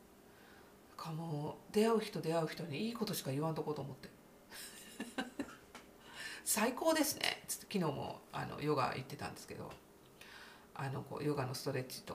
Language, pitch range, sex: Japanese, 145-200 Hz, female